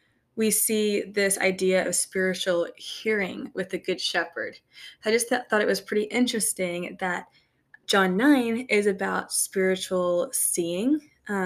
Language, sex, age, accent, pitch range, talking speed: English, female, 20-39, American, 180-225 Hz, 135 wpm